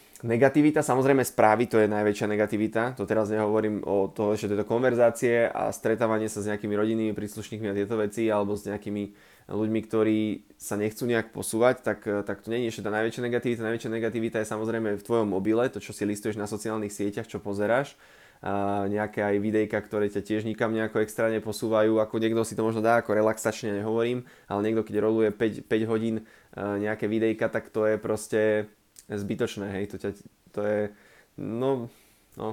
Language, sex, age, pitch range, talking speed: Slovak, male, 20-39, 105-120 Hz, 180 wpm